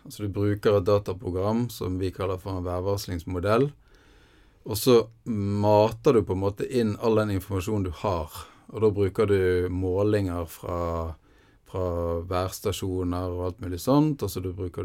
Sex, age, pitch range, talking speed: male, 30-49, 90-115 Hz, 160 wpm